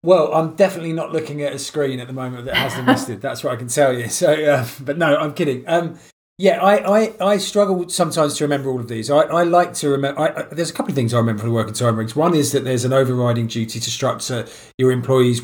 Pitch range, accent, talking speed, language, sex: 120-140 Hz, British, 270 wpm, English, male